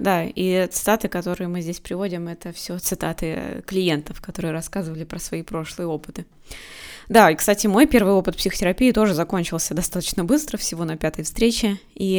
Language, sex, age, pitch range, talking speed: Russian, female, 20-39, 170-215 Hz, 165 wpm